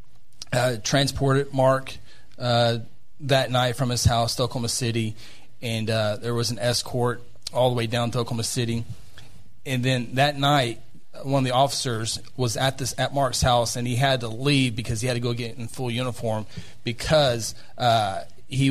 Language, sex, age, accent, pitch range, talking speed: English, male, 30-49, American, 115-135 Hz, 180 wpm